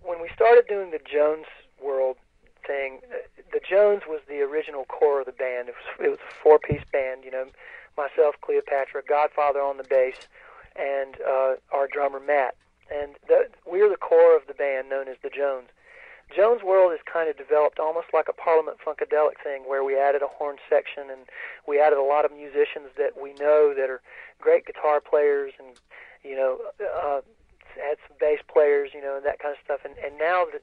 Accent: American